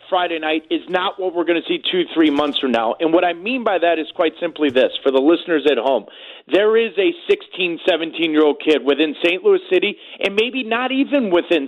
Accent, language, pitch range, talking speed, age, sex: American, English, 160-260 Hz, 225 wpm, 30-49, male